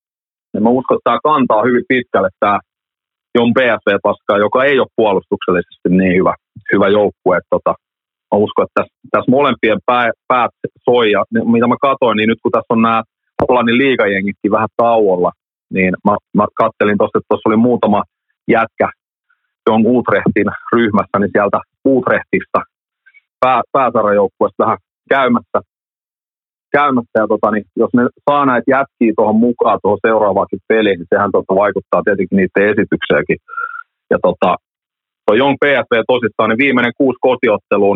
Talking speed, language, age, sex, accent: 140 wpm, Finnish, 30-49, male, native